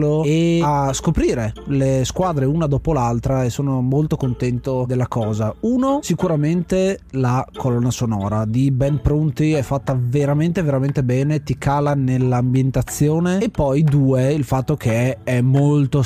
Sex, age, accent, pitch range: male, 30-49, native, 130-155 Hz